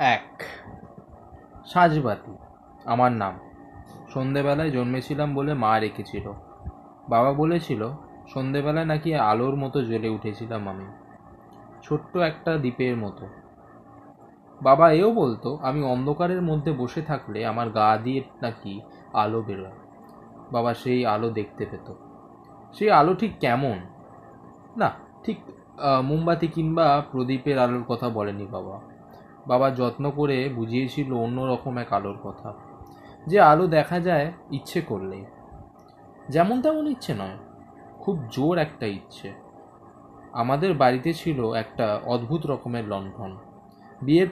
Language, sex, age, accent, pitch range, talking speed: Bengali, male, 20-39, native, 110-155 Hz, 115 wpm